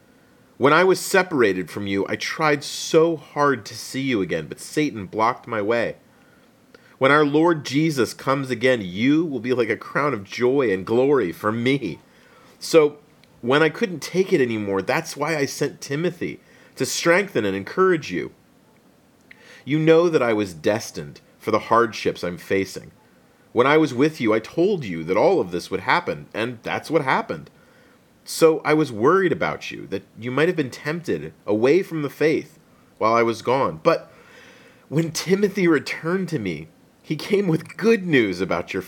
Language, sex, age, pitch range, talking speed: English, male, 40-59, 125-165 Hz, 180 wpm